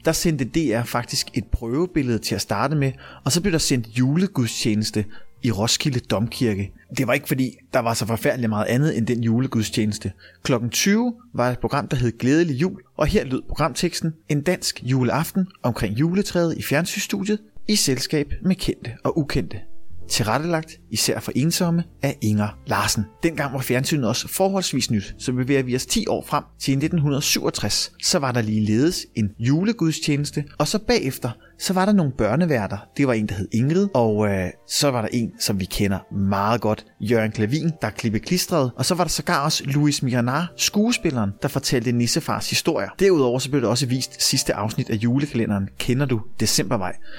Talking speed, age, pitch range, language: 185 wpm, 30-49, 115-155 Hz, Danish